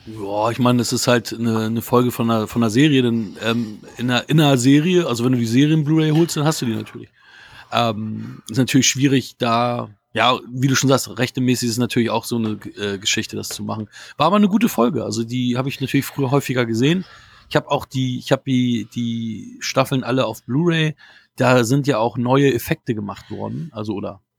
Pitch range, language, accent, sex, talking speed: 115-145 Hz, German, German, male, 225 wpm